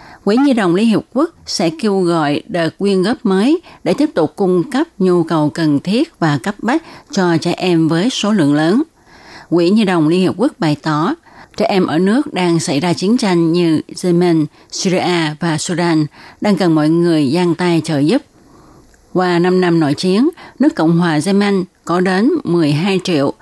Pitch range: 160-200 Hz